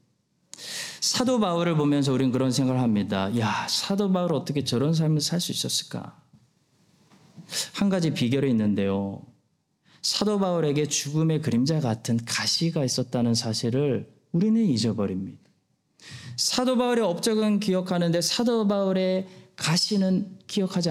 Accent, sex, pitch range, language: native, male, 135-200 Hz, Korean